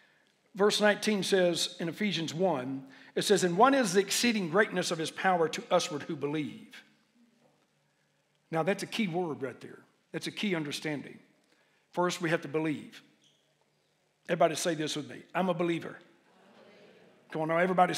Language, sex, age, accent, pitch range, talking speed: English, male, 60-79, American, 180-230 Hz, 165 wpm